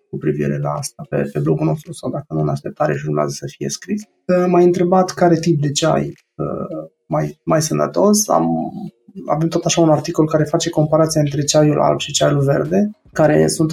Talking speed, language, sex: 185 wpm, Romanian, male